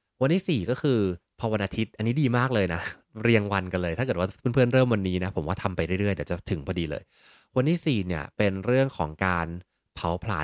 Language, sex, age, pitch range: Thai, male, 20-39, 90-115 Hz